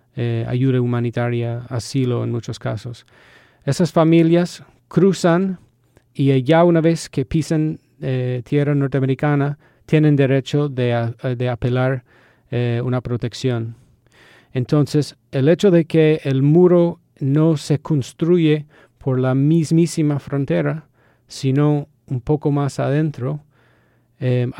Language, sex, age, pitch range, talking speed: Spanish, male, 40-59, 125-150 Hz, 115 wpm